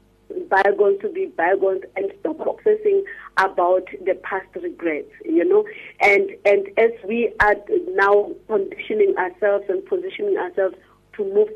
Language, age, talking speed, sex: English, 40-59, 135 wpm, female